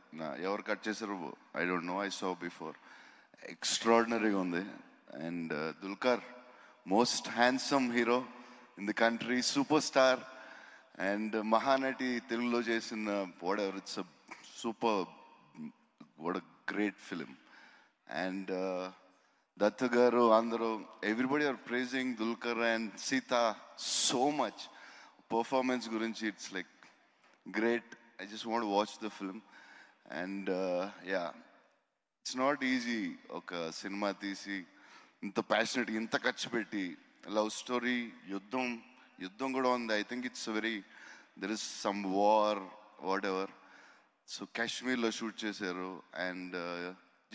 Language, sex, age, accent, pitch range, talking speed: Telugu, male, 30-49, native, 100-125 Hz, 125 wpm